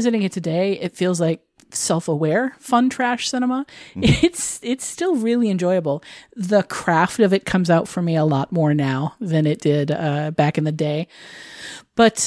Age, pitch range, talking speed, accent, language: 40-59, 165-215 Hz, 175 wpm, American, English